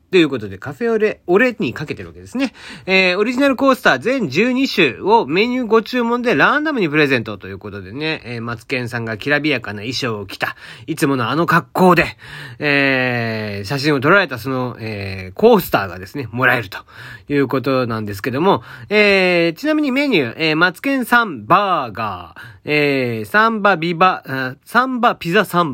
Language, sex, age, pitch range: Japanese, male, 40-59, 125-200 Hz